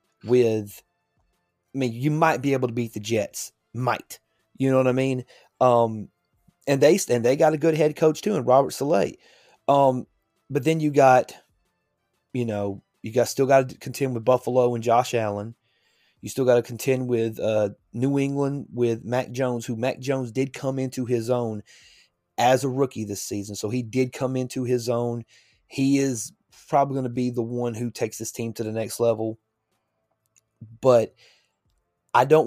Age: 30-49